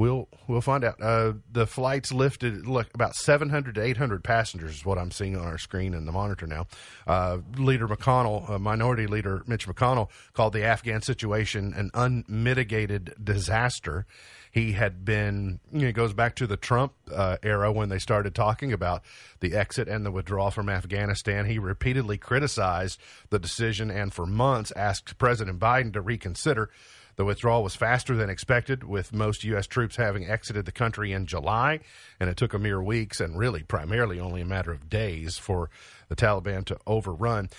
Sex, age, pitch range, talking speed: male, 40-59, 100-130 Hz, 180 wpm